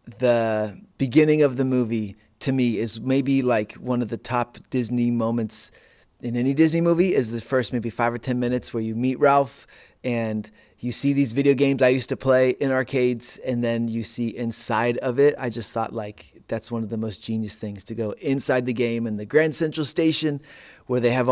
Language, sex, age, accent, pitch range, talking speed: English, male, 30-49, American, 115-130 Hz, 210 wpm